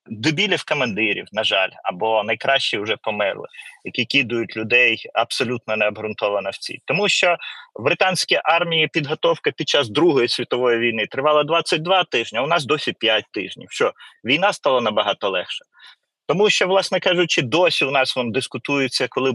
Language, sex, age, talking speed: Ukrainian, male, 30-49, 150 wpm